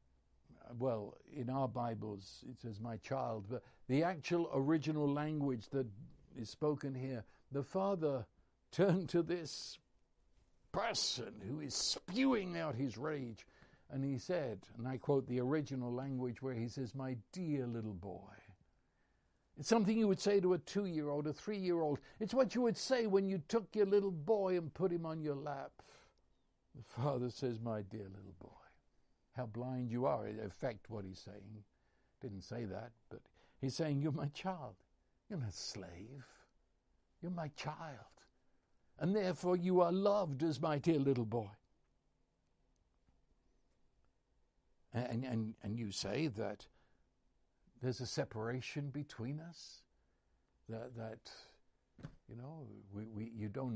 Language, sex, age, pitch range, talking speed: English, male, 60-79, 115-160 Hz, 145 wpm